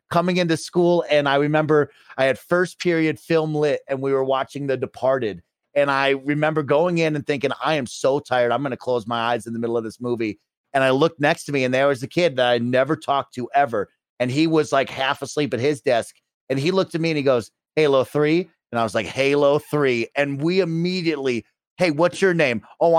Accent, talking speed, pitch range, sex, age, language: American, 240 wpm, 125-160 Hz, male, 30-49, English